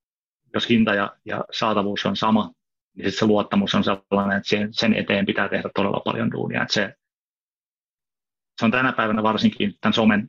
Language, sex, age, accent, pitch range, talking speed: Finnish, male, 30-49, native, 100-120 Hz, 155 wpm